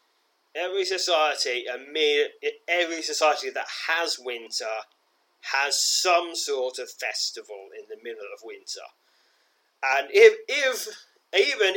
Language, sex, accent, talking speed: English, male, British, 105 wpm